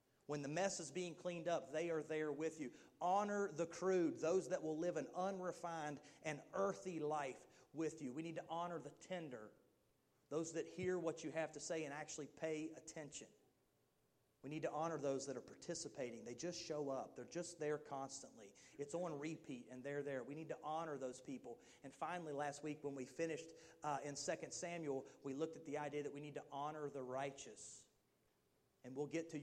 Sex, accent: male, American